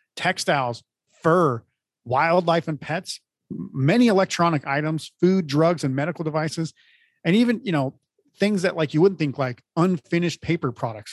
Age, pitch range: 30-49, 130-160 Hz